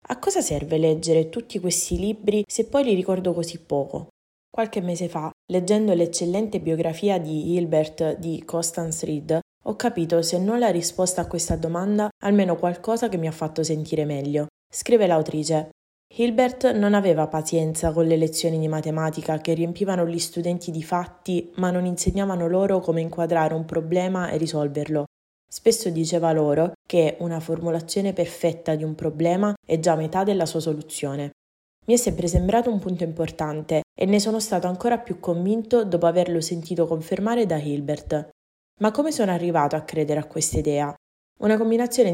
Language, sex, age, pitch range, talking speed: Italian, female, 20-39, 160-200 Hz, 165 wpm